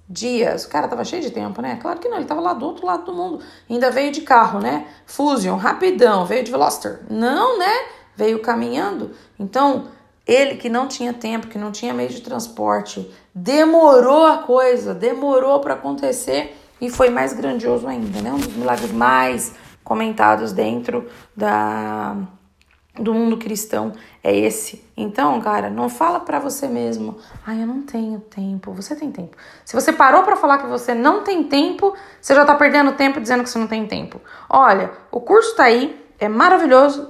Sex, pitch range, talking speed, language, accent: female, 225-325 Hz, 180 wpm, Portuguese, Brazilian